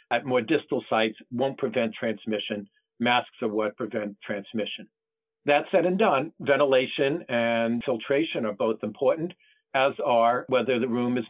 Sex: male